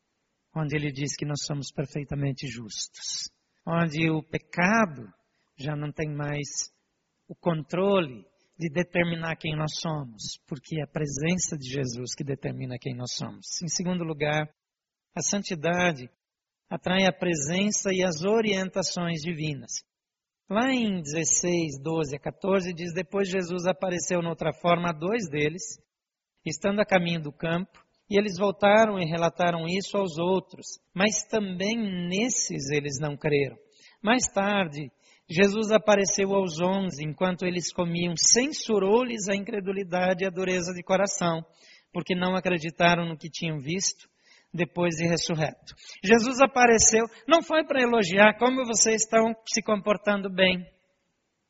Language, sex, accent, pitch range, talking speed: Portuguese, male, Brazilian, 160-200 Hz, 135 wpm